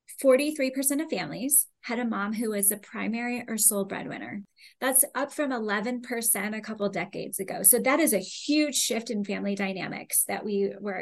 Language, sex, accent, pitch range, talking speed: English, female, American, 205-260 Hz, 175 wpm